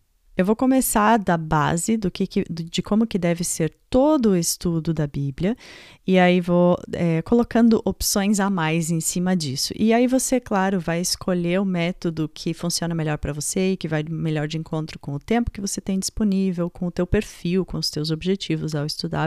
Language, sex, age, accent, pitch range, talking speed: Portuguese, female, 30-49, Brazilian, 165-205 Hz, 190 wpm